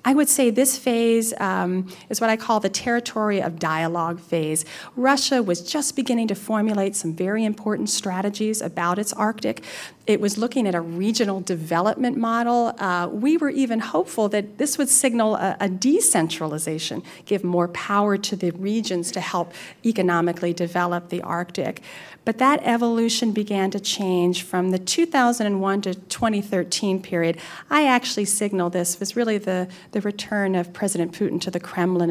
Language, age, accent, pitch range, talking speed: English, 40-59, American, 175-215 Hz, 165 wpm